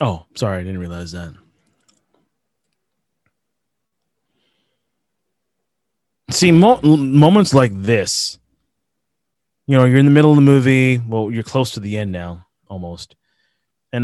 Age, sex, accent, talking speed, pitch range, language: 20-39, male, American, 120 wpm, 100-125 Hz, English